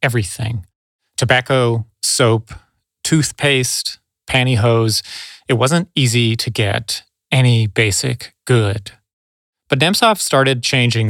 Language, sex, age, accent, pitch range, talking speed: English, male, 30-49, American, 110-130 Hz, 90 wpm